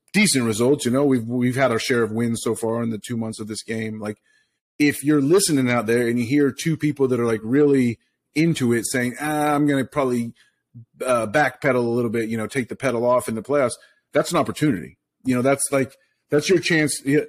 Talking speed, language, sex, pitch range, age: 235 wpm, English, male, 110-135 Hz, 30-49